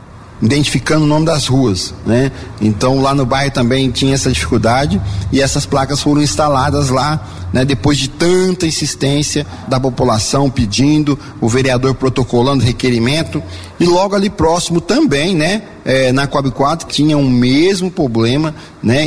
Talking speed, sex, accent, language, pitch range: 150 wpm, male, Brazilian, Portuguese, 120-145 Hz